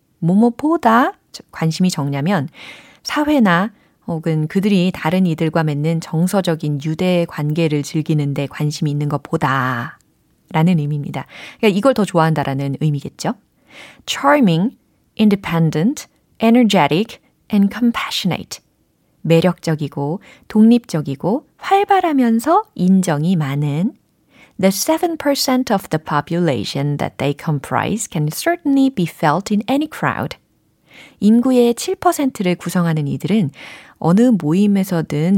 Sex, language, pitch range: female, Korean, 155-225 Hz